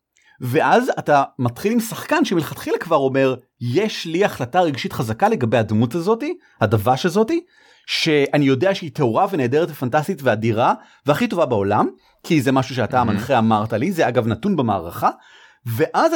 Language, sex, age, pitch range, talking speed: Hebrew, male, 30-49, 125-195 Hz, 150 wpm